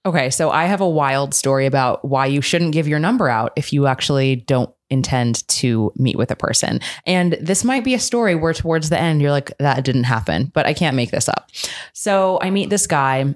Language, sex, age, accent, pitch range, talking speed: English, female, 20-39, American, 130-175 Hz, 230 wpm